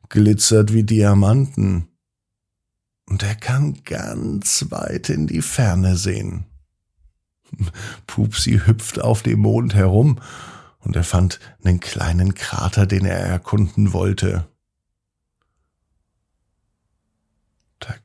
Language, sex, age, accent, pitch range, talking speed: German, male, 50-69, German, 95-125 Hz, 95 wpm